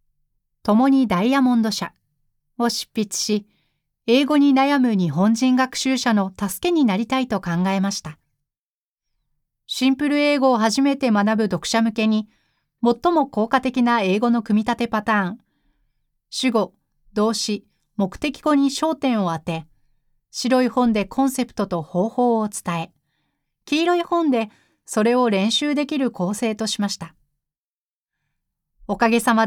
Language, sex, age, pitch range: Japanese, female, 40-59, 180-255 Hz